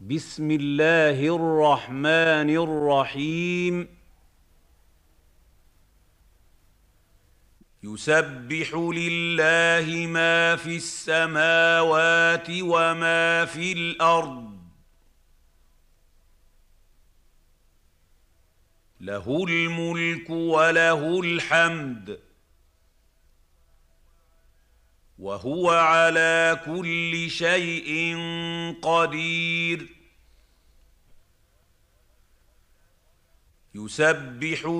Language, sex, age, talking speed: Arabic, male, 50-69, 40 wpm